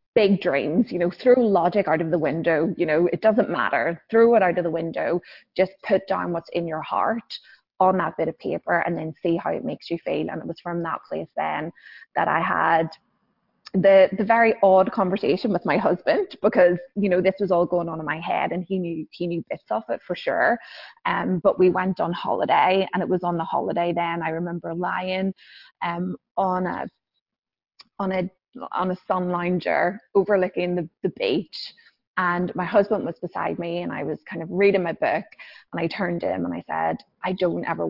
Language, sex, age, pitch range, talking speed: English, female, 20-39, 170-195 Hz, 210 wpm